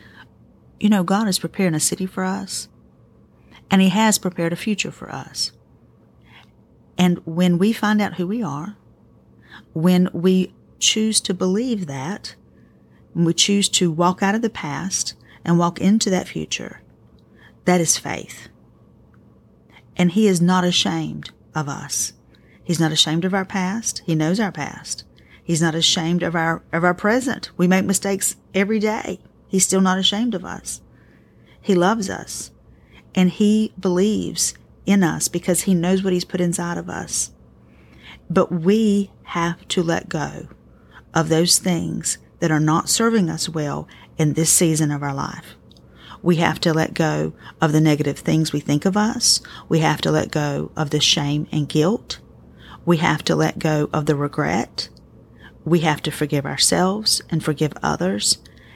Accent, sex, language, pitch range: American, female, English, 155-195 Hz